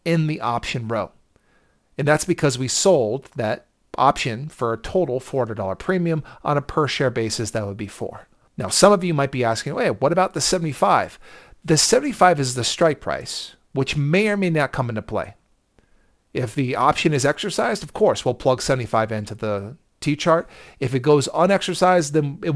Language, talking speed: English, 190 wpm